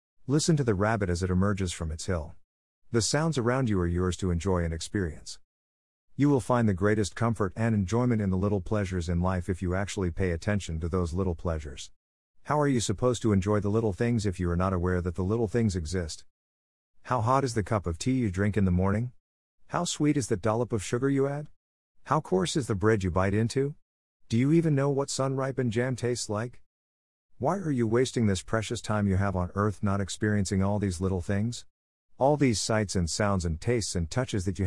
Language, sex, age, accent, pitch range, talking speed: English, male, 50-69, American, 90-120 Hz, 220 wpm